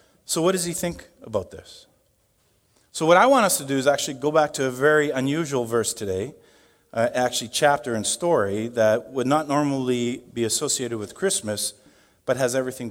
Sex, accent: male, American